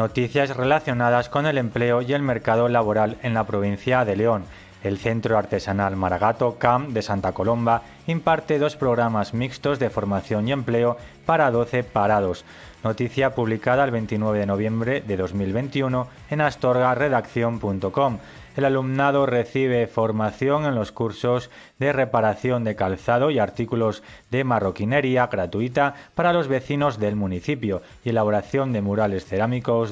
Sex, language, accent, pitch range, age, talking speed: male, Spanish, Spanish, 105-130 Hz, 30-49, 140 wpm